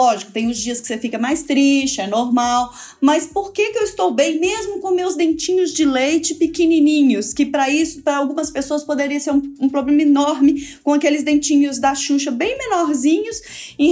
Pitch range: 275-330 Hz